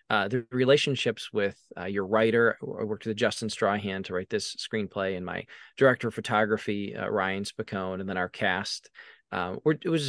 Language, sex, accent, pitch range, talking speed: English, male, American, 105-130 Hz, 190 wpm